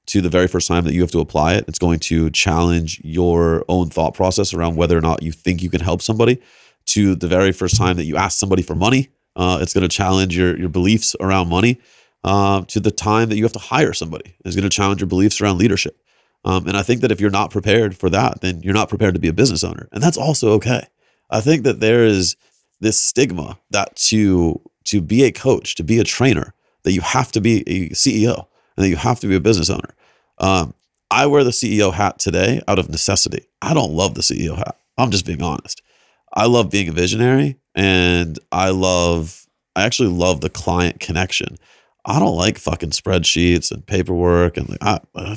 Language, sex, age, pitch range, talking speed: English, male, 30-49, 85-105 Hz, 225 wpm